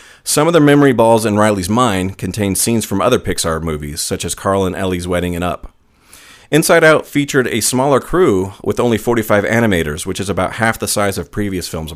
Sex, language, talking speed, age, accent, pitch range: male, English, 205 wpm, 40-59, American, 85-110 Hz